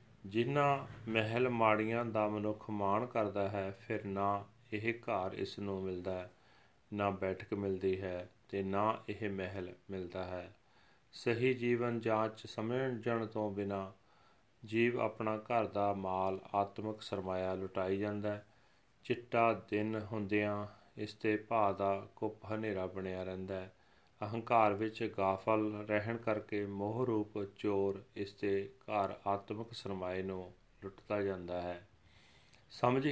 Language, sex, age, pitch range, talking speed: Punjabi, male, 30-49, 100-115 Hz, 125 wpm